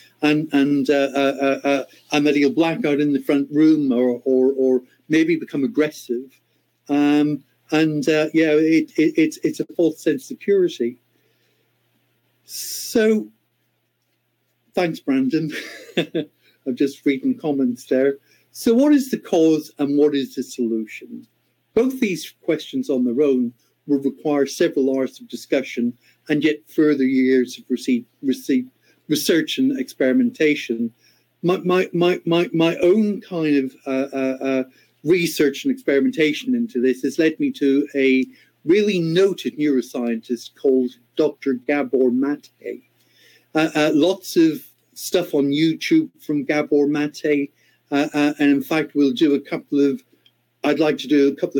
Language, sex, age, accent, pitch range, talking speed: English, male, 50-69, British, 130-165 Hz, 140 wpm